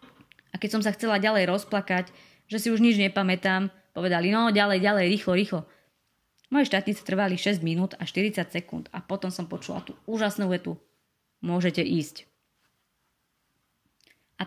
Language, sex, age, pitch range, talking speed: Slovak, female, 20-39, 165-200 Hz, 145 wpm